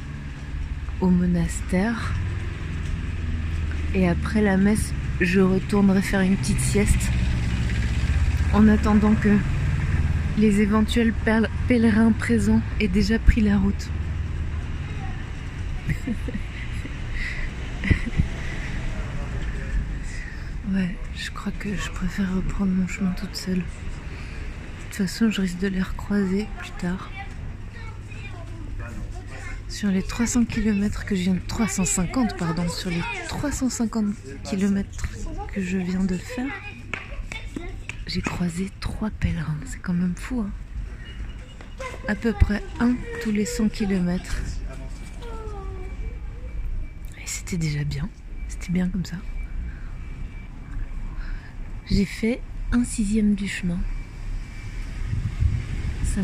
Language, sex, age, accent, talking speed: French, female, 30-49, French, 100 wpm